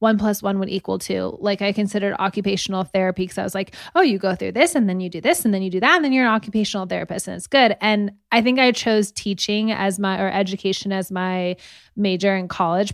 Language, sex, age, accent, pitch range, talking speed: English, female, 20-39, American, 185-230 Hz, 250 wpm